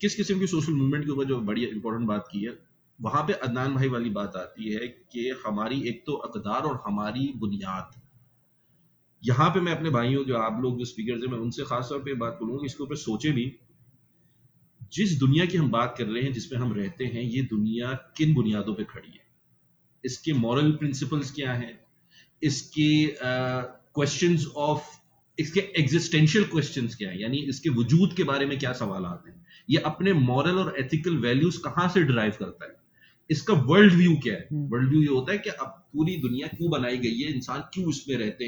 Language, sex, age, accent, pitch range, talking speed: English, male, 30-49, Indian, 125-160 Hz, 170 wpm